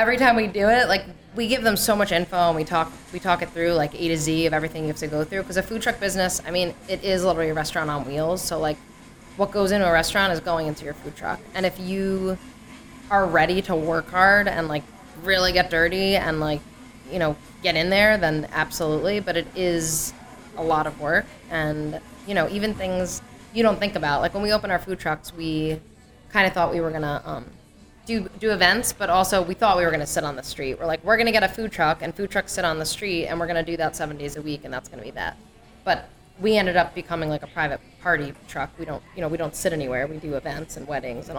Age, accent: 10-29, American